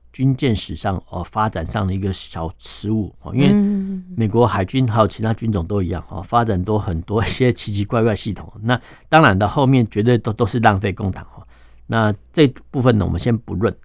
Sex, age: male, 60-79